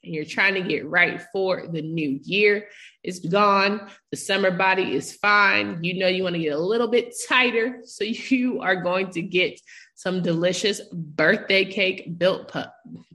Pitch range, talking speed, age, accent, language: 170-205 Hz, 180 wpm, 20-39, American, English